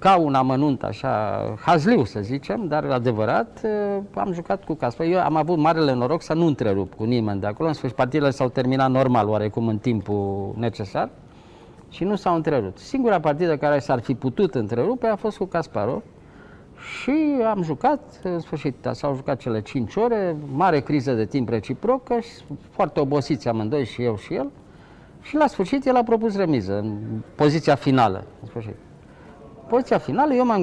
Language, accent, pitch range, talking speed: Romanian, native, 125-200 Hz, 170 wpm